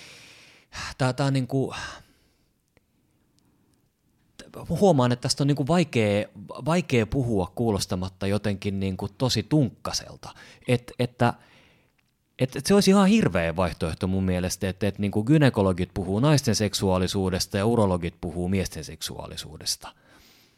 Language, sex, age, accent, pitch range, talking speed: Finnish, male, 30-49, native, 90-120 Hz, 85 wpm